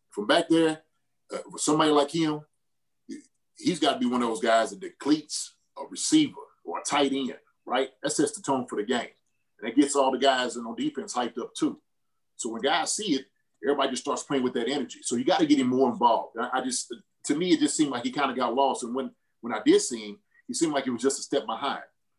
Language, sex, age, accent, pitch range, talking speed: English, male, 30-49, American, 125-170 Hz, 250 wpm